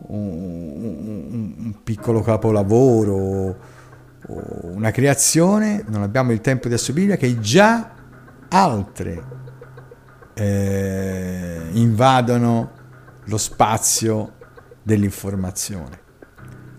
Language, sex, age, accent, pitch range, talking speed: Italian, male, 50-69, native, 100-130 Hz, 70 wpm